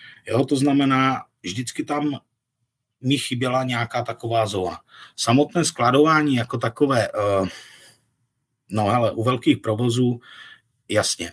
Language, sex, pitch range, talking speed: Czech, male, 105-125 Hz, 105 wpm